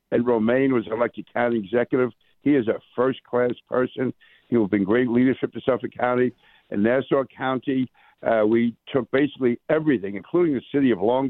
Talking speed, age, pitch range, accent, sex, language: 170 wpm, 60-79, 120-135 Hz, American, male, English